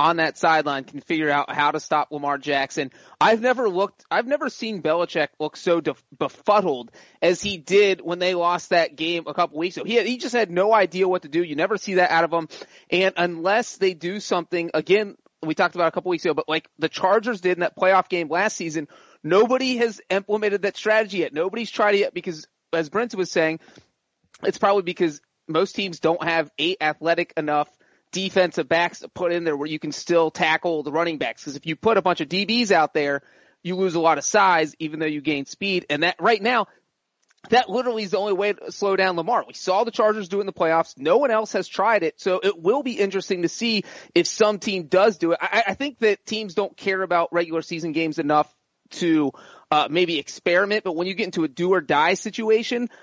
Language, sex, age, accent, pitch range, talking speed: English, male, 30-49, American, 160-200 Hz, 225 wpm